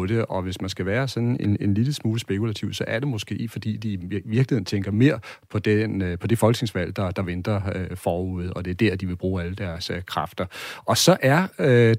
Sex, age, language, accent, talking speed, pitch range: male, 40-59, Danish, native, 235 wpm, 100-125 Hz